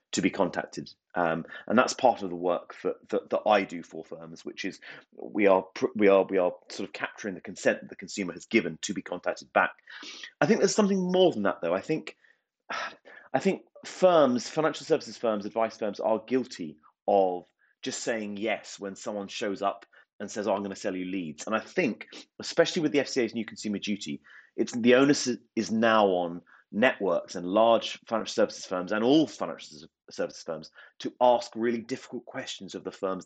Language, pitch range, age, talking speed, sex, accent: English, 95-125 Hz, 30-49, 200 wpm, male, British